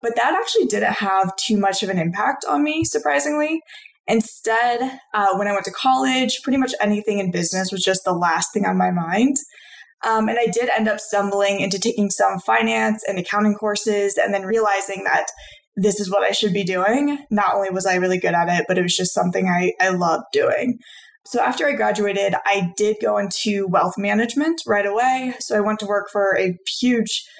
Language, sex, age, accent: English, female, 20-39, American